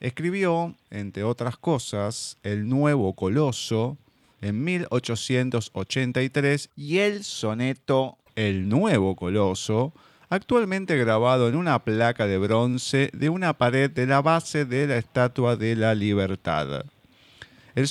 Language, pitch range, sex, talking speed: Spanish, 110-145 Hz, male, 115 wpm